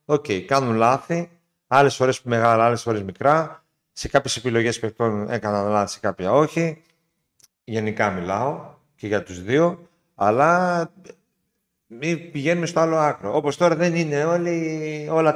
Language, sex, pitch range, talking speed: Greek, male, 105-150 Hz, 145 wpm